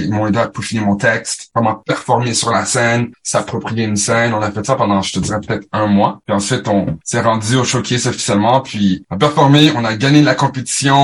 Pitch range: 105-130 Hz